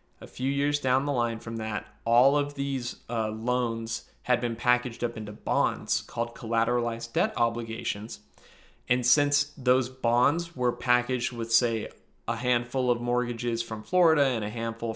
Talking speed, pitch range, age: 160 wpm, 115-135 Hz, 20-39